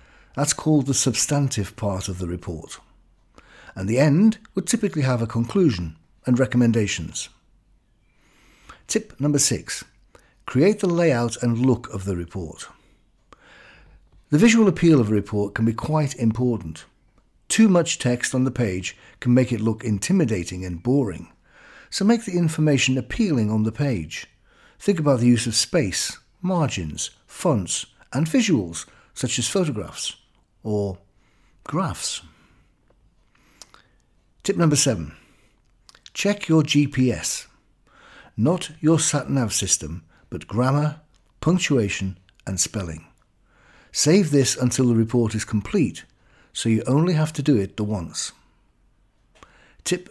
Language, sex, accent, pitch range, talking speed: English, male, British, 100-150 Hz, 130 wpm